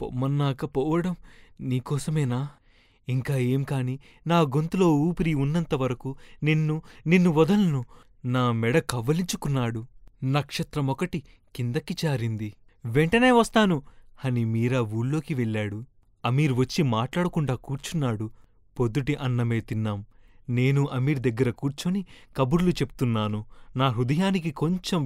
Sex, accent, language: male, native, Telugu